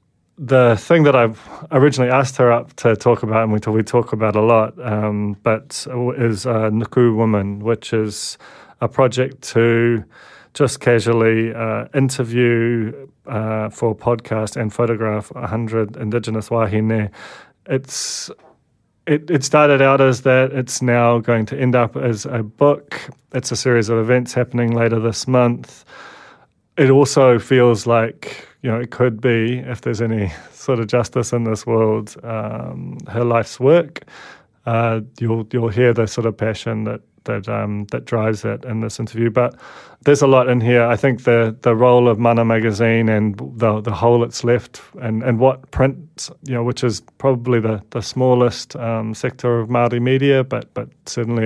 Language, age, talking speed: English, 30-49, 170 wpm